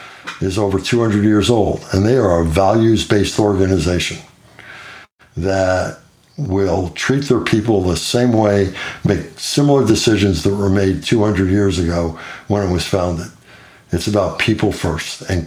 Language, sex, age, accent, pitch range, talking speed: English, male, 60-79, American, 95-110 Hz, 145 wpm